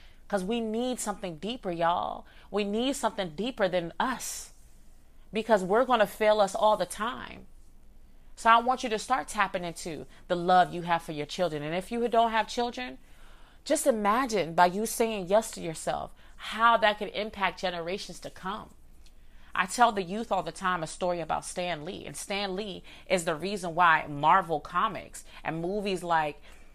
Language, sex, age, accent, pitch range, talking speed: English, female, 30-49, American, 160-210 Hz, 180 wpm